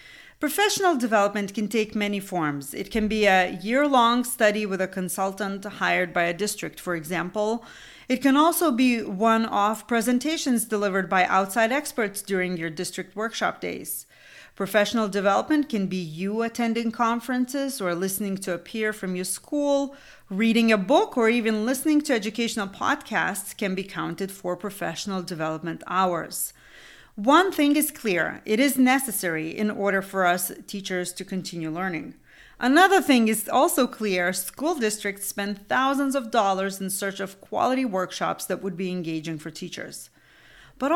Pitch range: 185-250 Hz